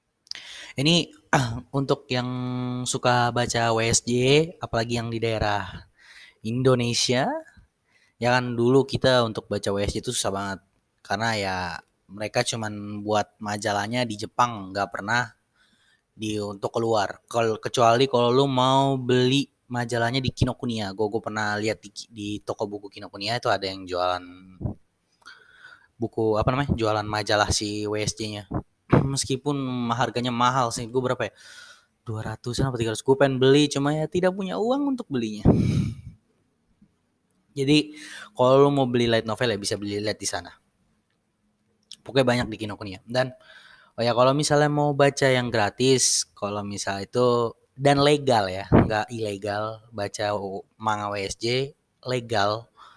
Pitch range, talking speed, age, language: 105-130 Hz, 130 wpm, 20-39, Indonesian